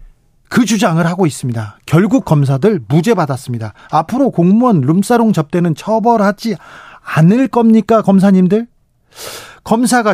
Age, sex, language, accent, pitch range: 40-59, male, Korean, native, 145-205 Hz